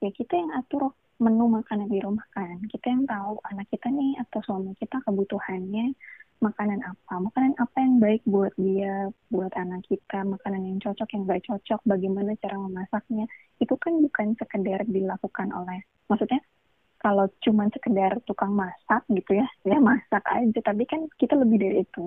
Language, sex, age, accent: Indonesian, female, 20-39, native